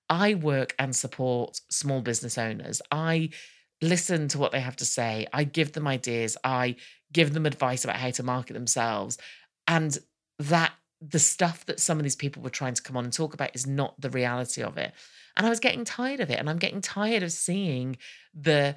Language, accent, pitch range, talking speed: English, British, 130-175 Hz, 210 wpm